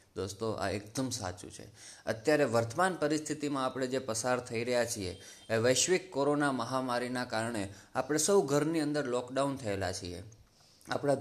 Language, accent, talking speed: Gujarati, native, 145 wpm